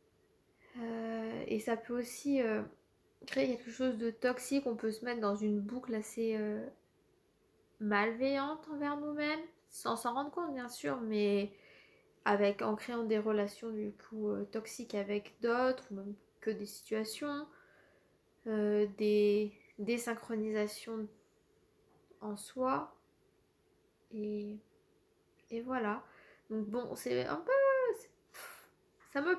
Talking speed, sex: 125 wpm, female